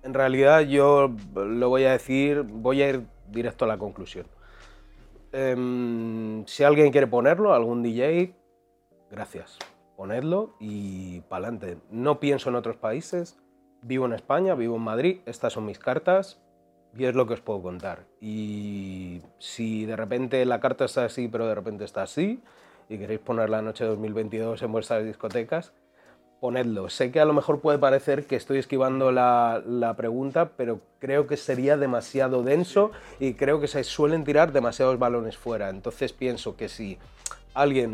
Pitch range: 115-135 Hz